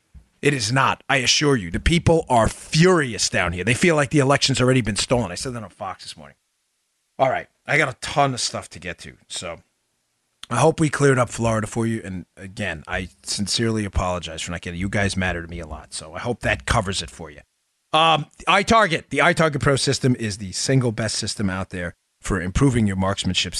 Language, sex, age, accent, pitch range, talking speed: English, male, 30-49, American, 100-135 Hz, 225 wpm